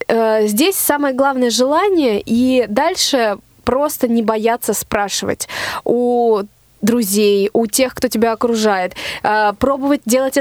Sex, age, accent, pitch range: female, 20-39, native, 225-280 Hz